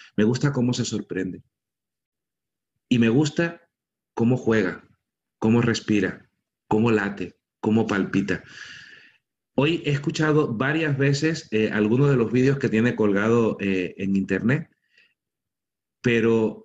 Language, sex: Spanish, male